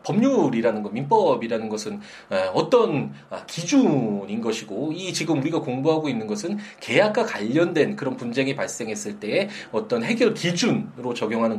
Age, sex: 20-39, male